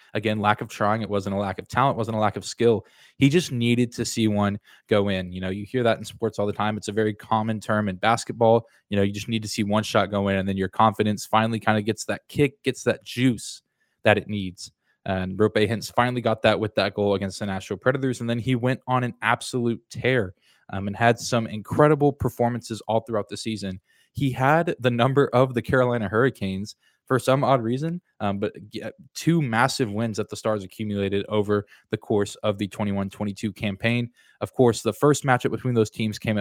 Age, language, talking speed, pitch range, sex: 20-39, English, 225 wpm, 105-125 Hz, male